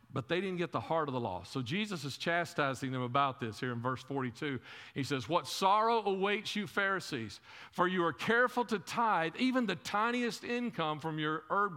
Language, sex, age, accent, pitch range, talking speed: English, male, 50-69, American, 140-200 Hz, 205 wpm